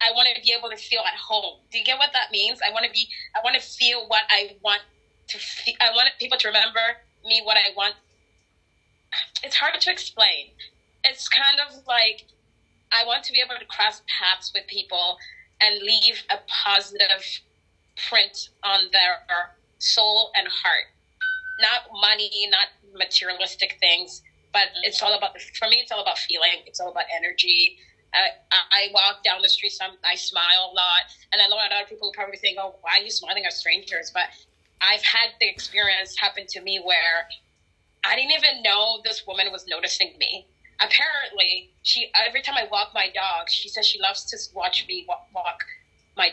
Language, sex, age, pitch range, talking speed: English, female, 20-39, 195-245 Hz, 190 wpm